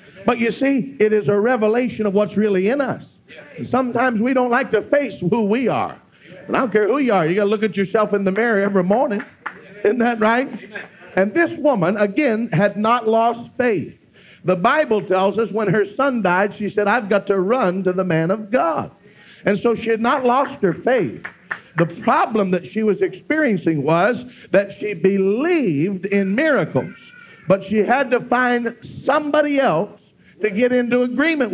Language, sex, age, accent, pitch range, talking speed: English, male, 50-69, American, 205-255 Hz, 190 wpm